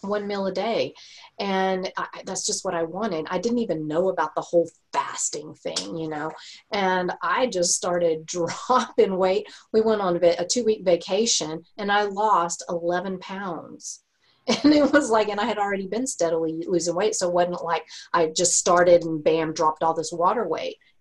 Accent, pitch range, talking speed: American, 165-215 Hz, 190 wpm